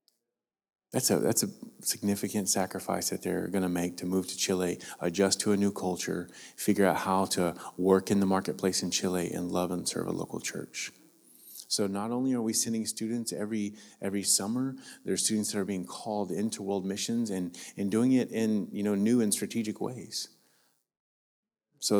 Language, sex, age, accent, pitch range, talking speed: English, male, 30-49, American, 95-110 Hz, 190 wpm